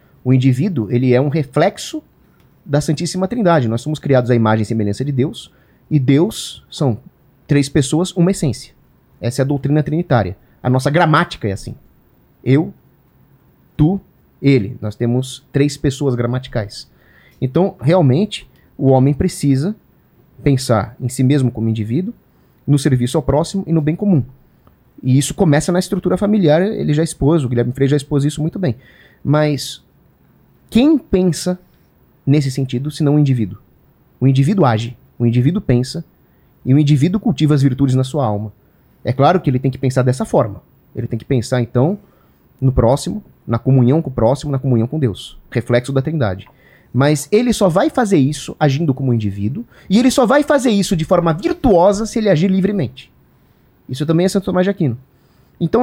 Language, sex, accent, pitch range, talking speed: Portuguese, male, Brazilian, 125-175 Hz, 175 wpm